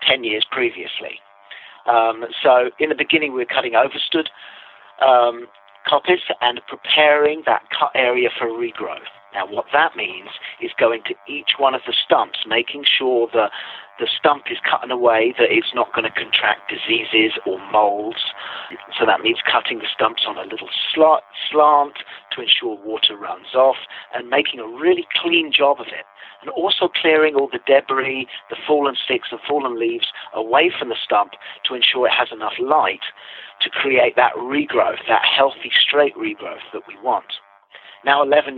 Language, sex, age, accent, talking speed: English, male, 50-69, British, 170 wpm